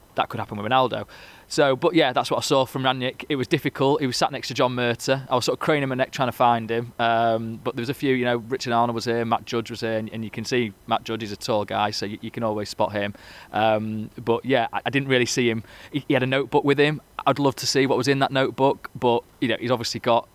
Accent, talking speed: British, 295 wpm